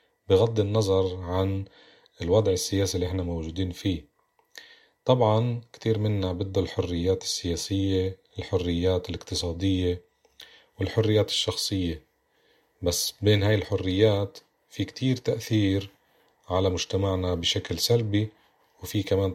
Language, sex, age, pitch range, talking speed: Arabic, male, 30-49, 90-105 Hz, 100 wpm